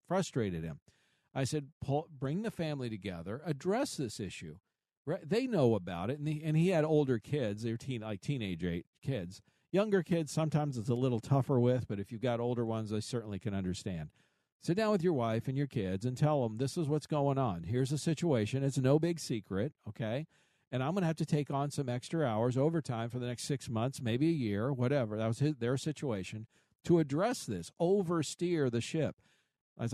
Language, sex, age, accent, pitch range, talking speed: English, male, 50-69, American, 120-150 Hz, 210 wpm